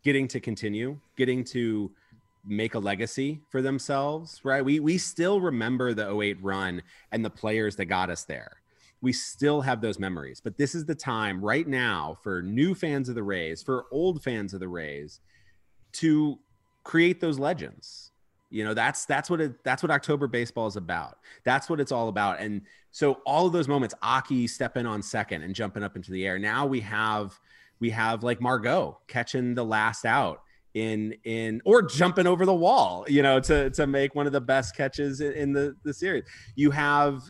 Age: 30-49